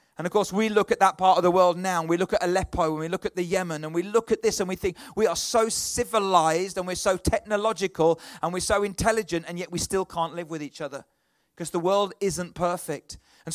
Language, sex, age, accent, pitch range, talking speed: English, male, 30-49, British, 175-210 Hz, 255 wpm